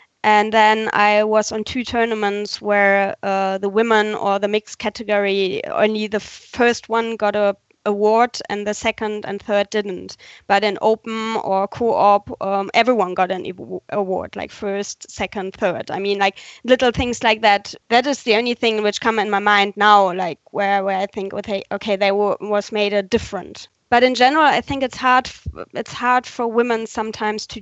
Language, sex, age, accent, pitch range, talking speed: English, female, 20-39, German, 200-220 Hz, 185 wpm